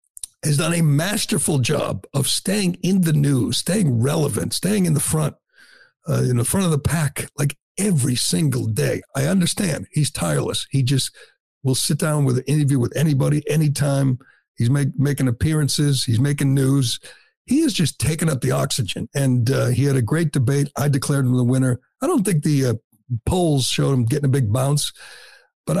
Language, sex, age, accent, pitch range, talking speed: English, male, 60-79, American, 130-160 Hz, 190 wpm